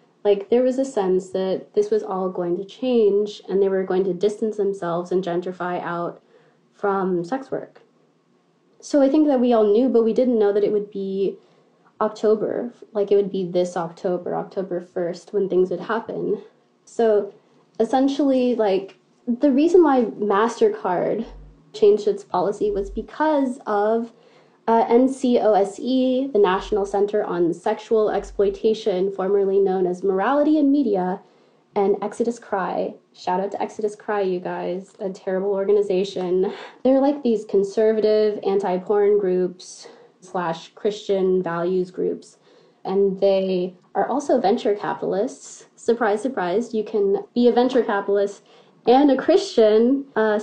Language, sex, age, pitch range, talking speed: English, female, 20-39, 190-235 Hz, 145 wpm